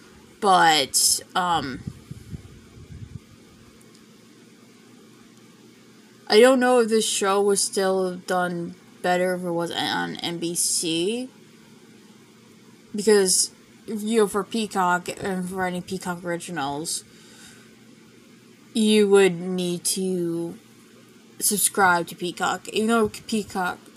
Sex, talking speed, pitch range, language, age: female, 95 wpm, 185-225 Hz, English, 10-29